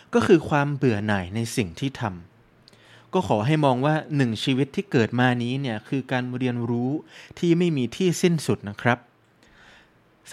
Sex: male